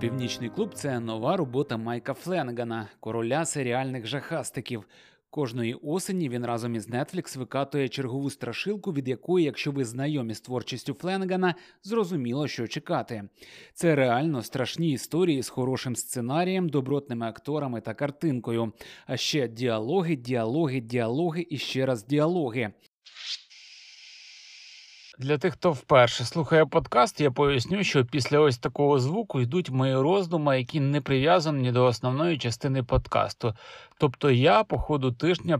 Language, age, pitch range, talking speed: Ukrainian, 30-49, 125-160 Hz, 135 wpm